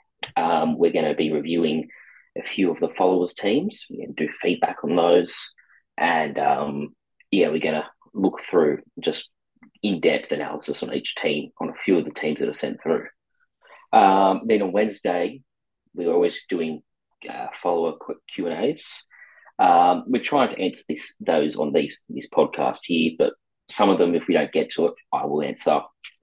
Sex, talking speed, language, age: male, 175 wpm, English, 30-49